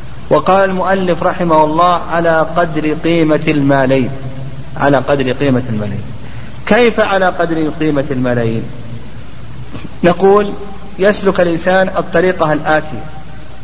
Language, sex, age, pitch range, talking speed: Arabic, male, 40-59, 145-185 Hz, 95 wpm